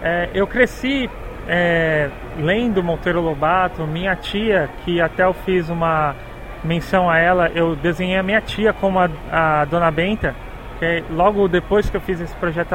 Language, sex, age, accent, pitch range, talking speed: Portuguese, male, 30-49, Brazilian, 175-230 Hz, 160 wpm